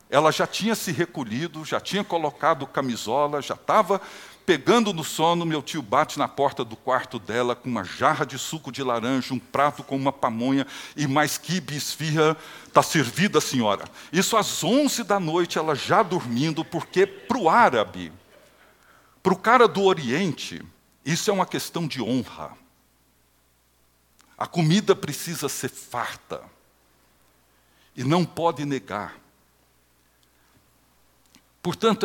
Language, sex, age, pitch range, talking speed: Portuguese, male, 60-79, 125-170 Hz, 140 wpm